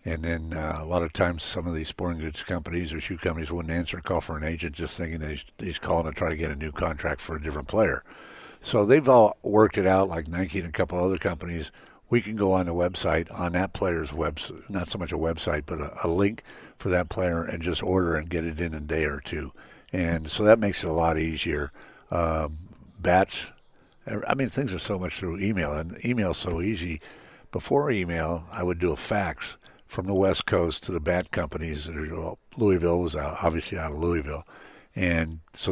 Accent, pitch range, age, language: American, 80-90 Hz, 60-79, English